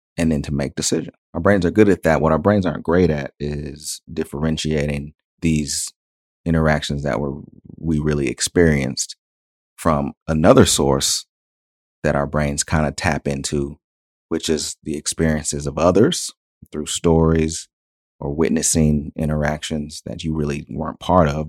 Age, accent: 30-49, American